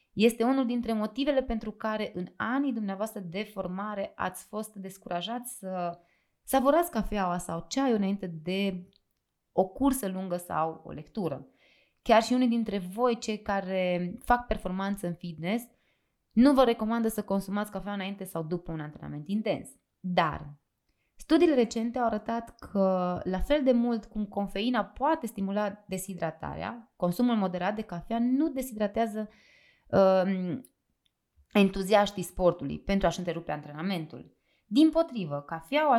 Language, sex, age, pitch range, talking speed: Romanian, female, 20-39, 180-240 Hz, 135 wpm